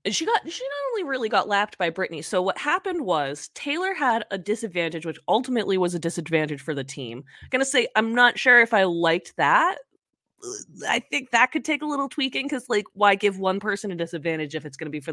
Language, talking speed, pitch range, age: English, 230 wpm, 165-245 Hz, 20-39